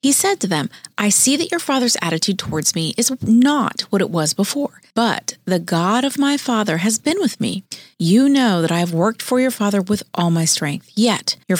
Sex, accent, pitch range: female, American, 180-245 Hz